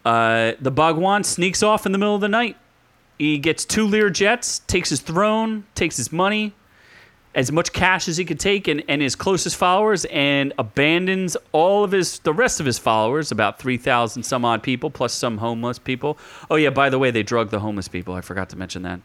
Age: 30-49